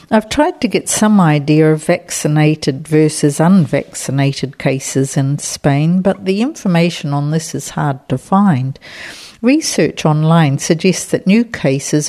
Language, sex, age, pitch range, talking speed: English, female, 60-79, 145-180 Hz, 140 wpm